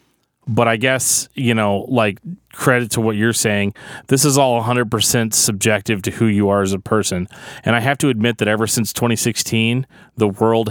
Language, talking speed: English, 190 wpm